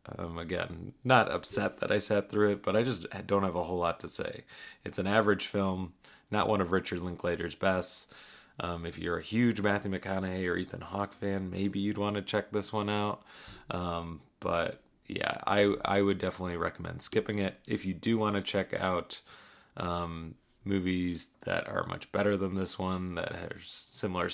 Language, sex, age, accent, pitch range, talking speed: English, male, 30-49, American, 85-100 Hz, 190 wpm